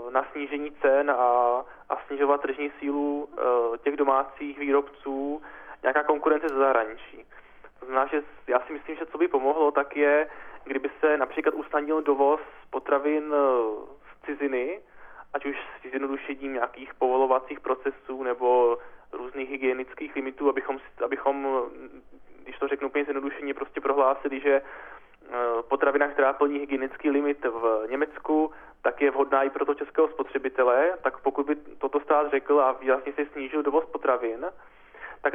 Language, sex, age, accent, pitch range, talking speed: Czech, male, 20-39, native, 135-155 Hz, 145 wpm